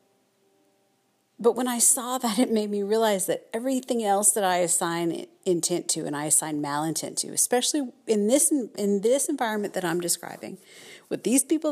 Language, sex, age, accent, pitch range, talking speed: English, female, 50-69, American, 150-220 Hz, 175 wpm